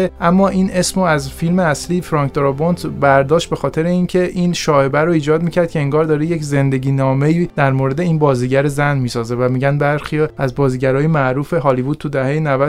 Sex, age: male, 30-49